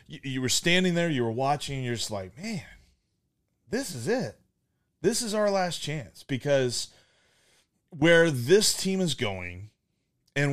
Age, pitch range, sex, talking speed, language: 30-49, 120-155 Hz, male, 155 wpm, English